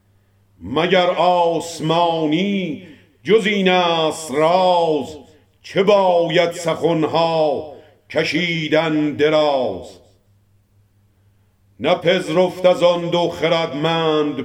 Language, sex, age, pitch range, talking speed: Persian, male, 50-69, 150-195 Hz, 70 wpm